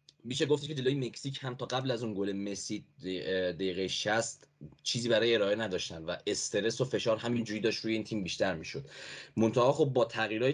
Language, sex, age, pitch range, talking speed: English, male, 10-29, 95-115 Hz, 180 wpm